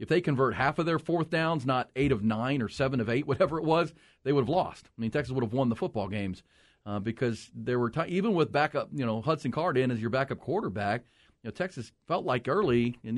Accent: American